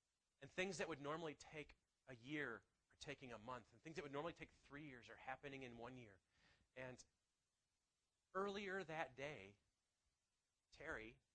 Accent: American